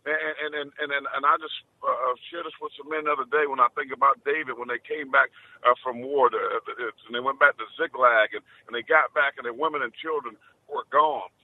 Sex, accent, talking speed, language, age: male, American, 260 wpm, English, 50-69